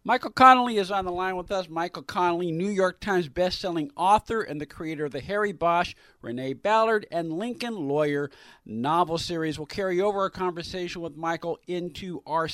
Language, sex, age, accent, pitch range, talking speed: English, male, 50-69, American, 160-205 Hz, 180 wpm